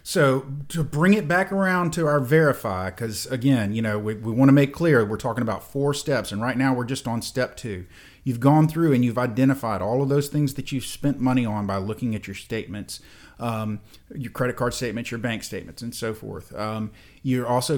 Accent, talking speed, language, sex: American, 220 wpm, English, male